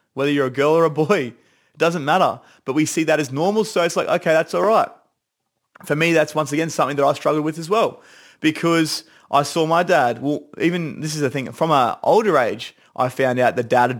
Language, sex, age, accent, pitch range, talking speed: English, male, 30-49, Australian, 135-170 Hz, 240 wpm